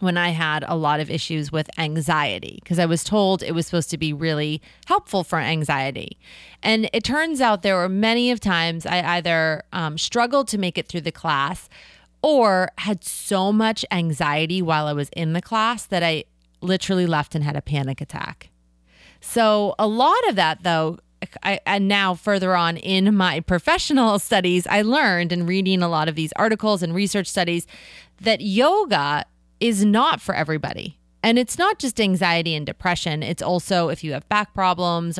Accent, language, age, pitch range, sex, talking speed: American, English, 30-49, 155-200 Hz, female, 180 wpm